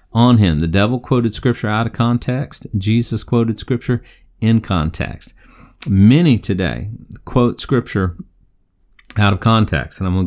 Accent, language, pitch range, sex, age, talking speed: American, English, 90-115 Hz, male, 40-59, 140 wpm